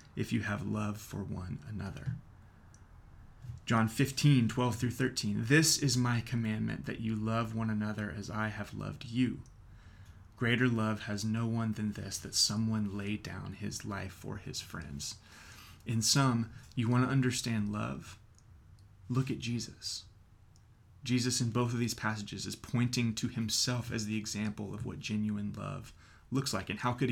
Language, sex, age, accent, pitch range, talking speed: English, male, 30-49, American, 105-125 Hz, 165 wpm